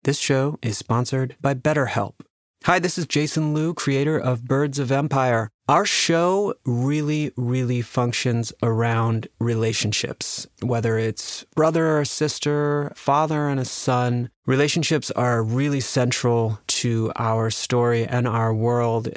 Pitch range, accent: 115-135 Hz, American